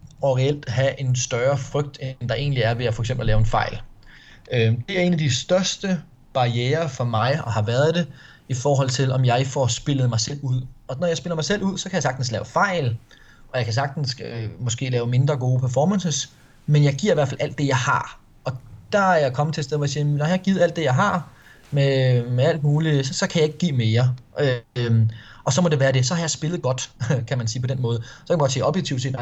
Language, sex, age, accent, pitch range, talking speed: Danish, male, 20-39, native, 125-150 Hz, 265 wpm